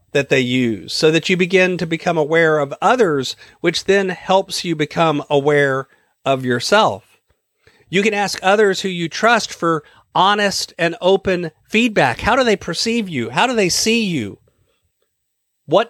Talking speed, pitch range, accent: 160 wpm, 155-205 Hz, American